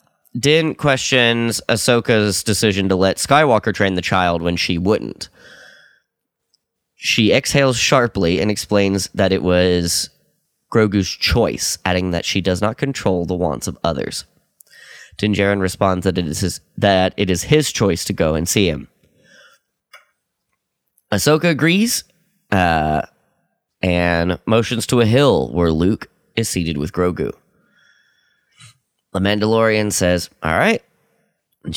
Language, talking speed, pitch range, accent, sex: English, 130 wpm, 90-110 Hz, American, male